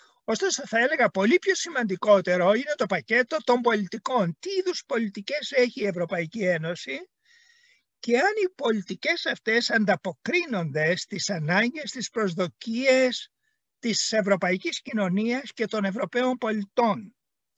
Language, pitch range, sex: Greek, 195-265 Hz, male